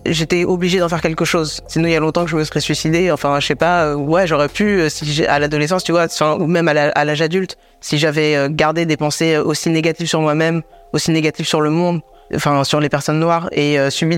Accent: French